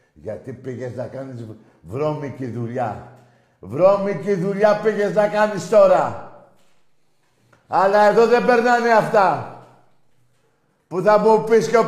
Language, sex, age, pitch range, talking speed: Greek, male, 60-79, 120-185 Hz, 115 wpm